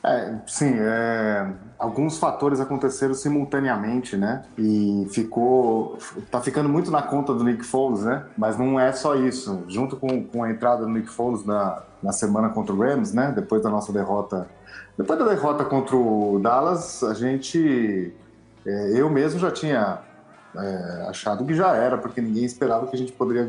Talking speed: 175 wpm